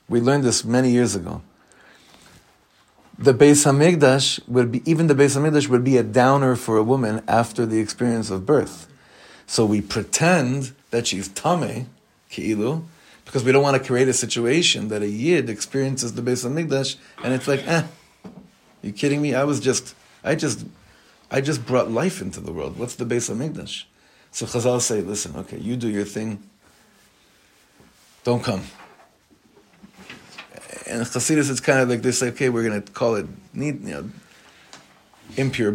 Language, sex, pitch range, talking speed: English, male, 110-135 Hz, 170 wpm